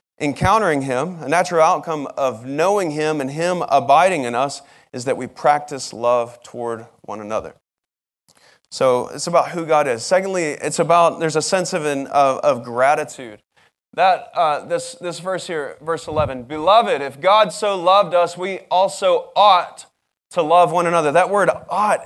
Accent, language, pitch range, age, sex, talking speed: American, English, 140-180 Hz, 20-39, male, 170 wpm